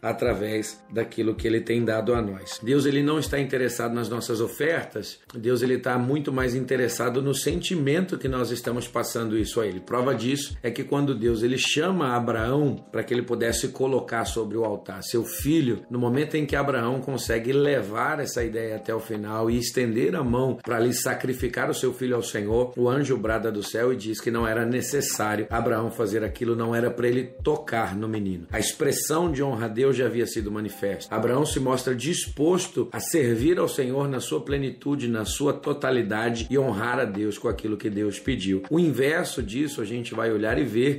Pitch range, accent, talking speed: 115-130 Hz, Brazilian, 195 wpm